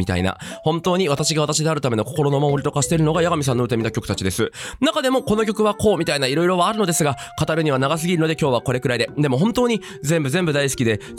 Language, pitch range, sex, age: Japanese, 125-175 Hz, male, 20-39